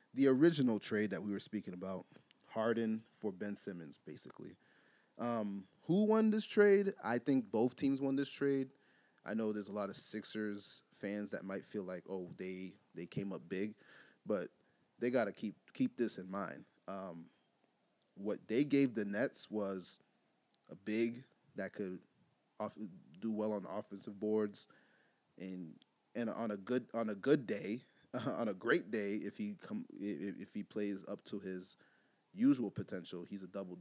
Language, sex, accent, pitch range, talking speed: English, male, American, 100-120 Hz, 175 wpm